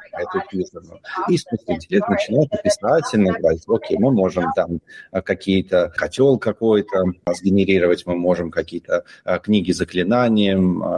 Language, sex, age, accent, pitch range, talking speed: Russian, male, 30-49, native, 95-130 Hz, 110 wpm